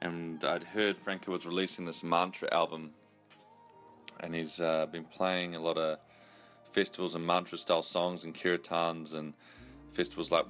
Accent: Australian